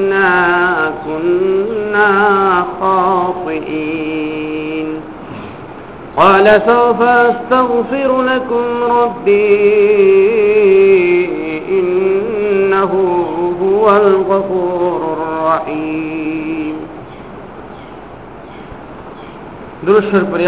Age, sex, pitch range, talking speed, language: 50-69, male, 160-210 Hz, 35 wpm, Bengali